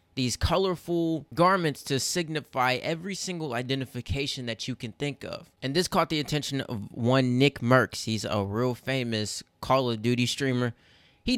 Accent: American